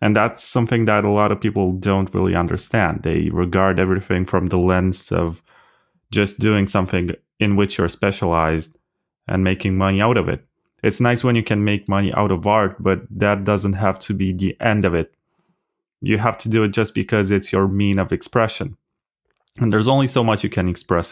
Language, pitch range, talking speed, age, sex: English, 90-105 Hz, 200 wpm, 20-39, male